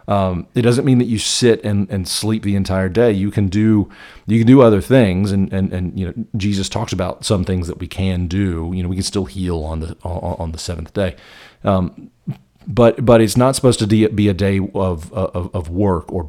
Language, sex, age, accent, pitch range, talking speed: English, male, 40-59, American, 90-110 Hz, 230 wpm